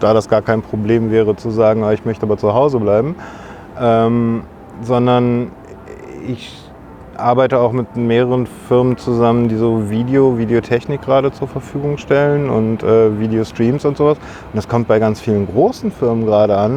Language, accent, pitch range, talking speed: English, German, 110-130 Hz, 170 wpm